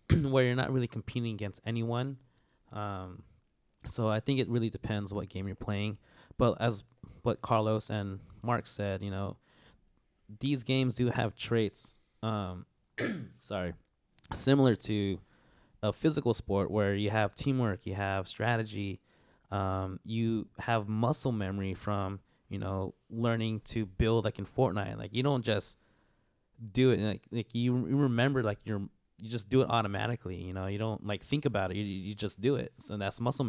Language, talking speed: English, 165 wpm